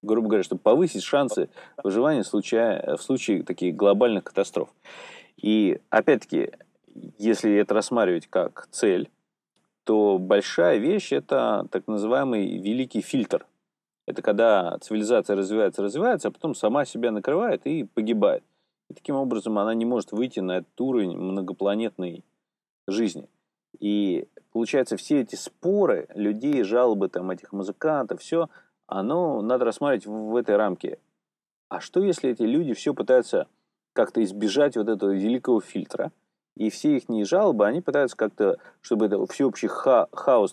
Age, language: 30-49, Russian